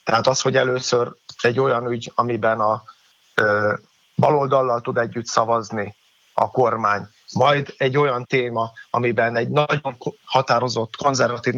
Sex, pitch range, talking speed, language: male, 115-135 Hz, 125 wpm, Hungarian